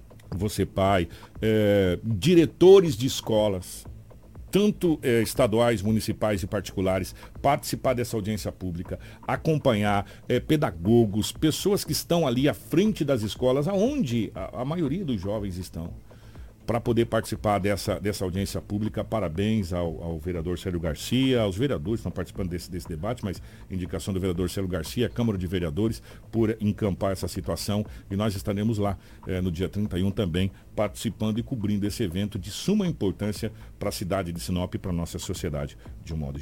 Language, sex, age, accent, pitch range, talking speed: Portuguese, male, 60-79, Brazilian, 100-135 Hz, 155 wpm